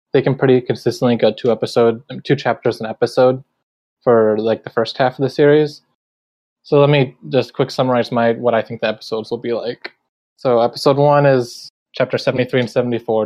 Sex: male